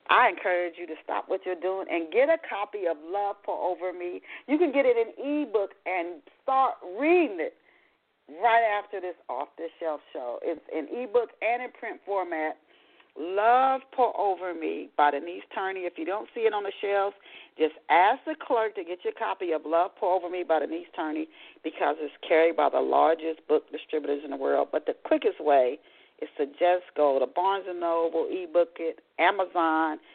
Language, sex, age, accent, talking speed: English, female, 40-59, American, 190 wpm